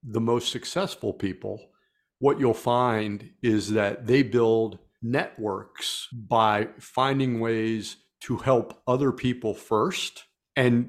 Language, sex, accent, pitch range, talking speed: English, male, American, 105-125 Hz, 115 wpm